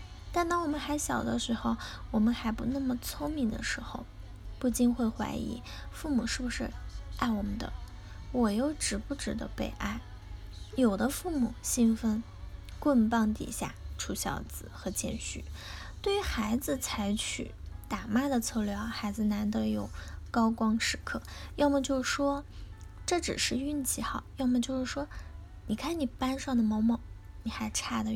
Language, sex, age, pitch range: Chinese, female, 10-29, 215-265 Hz